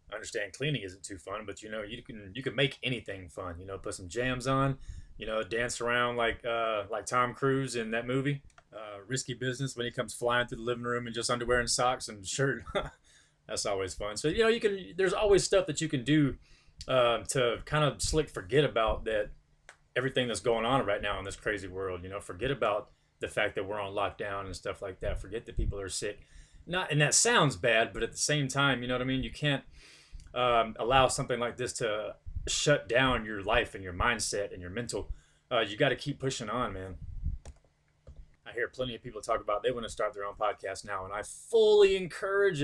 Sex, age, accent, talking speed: male, 20-39, American, 230 wpm